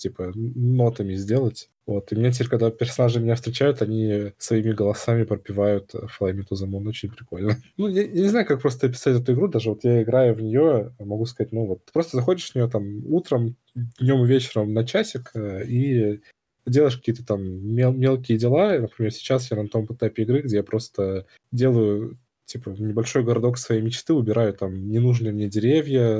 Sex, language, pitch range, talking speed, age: male, Ukrainian, 105-125 Hz, 180 wpm, 20-39